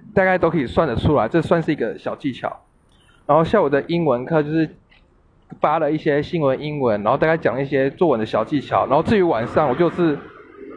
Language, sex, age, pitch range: Chinese, male, 20-39, 135-175 Hz